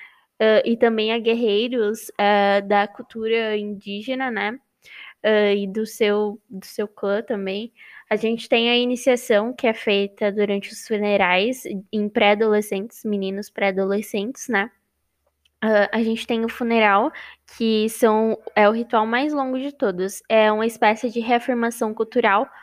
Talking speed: 145 wpm